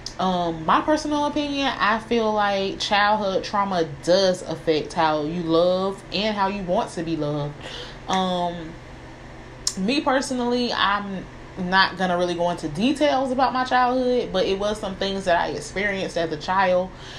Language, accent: English, American